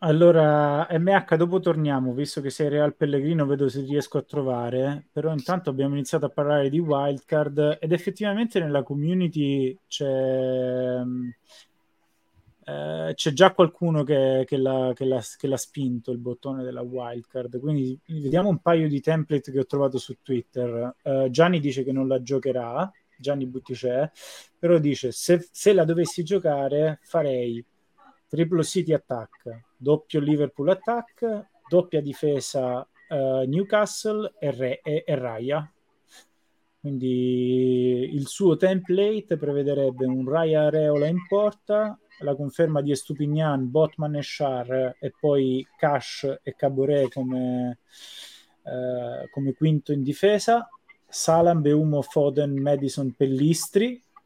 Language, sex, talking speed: Italian, male, 125 wpm